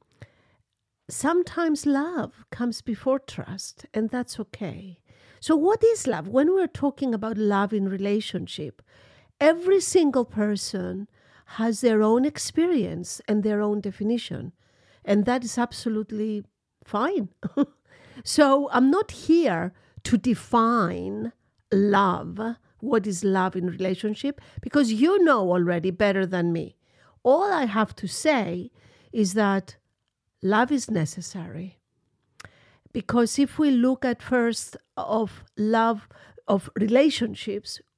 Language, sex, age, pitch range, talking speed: English, female, 50-69, 180-245 Hz, 115 wpm